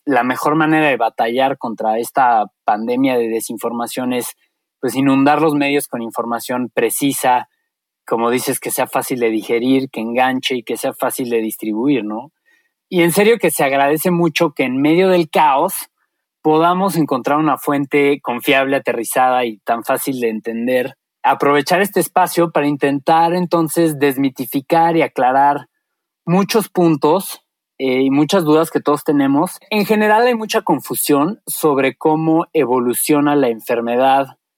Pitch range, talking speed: 130-170 Hz, 145 wpm